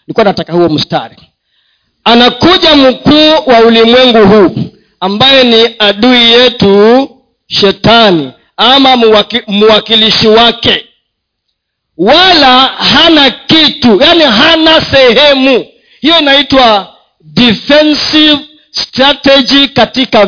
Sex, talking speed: male, 85 wpm